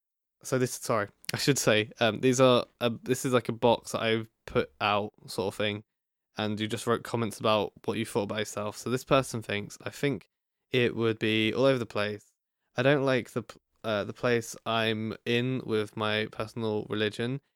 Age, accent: 20-39, British